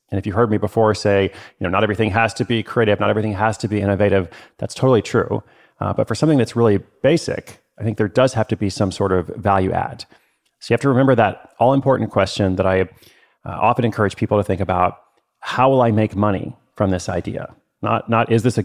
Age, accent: 30-49, American